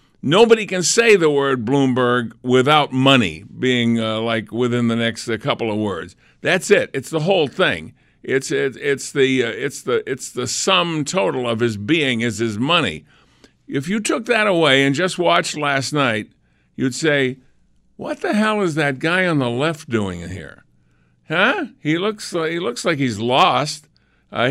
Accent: American